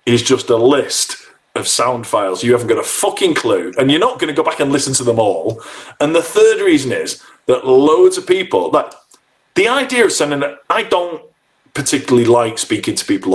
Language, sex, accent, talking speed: English, male, British, 205 wpm